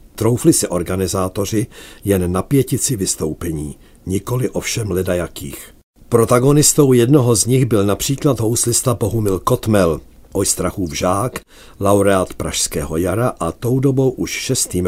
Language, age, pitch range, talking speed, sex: Czech, 50-69, 85-120 Hz, 115 wpm, male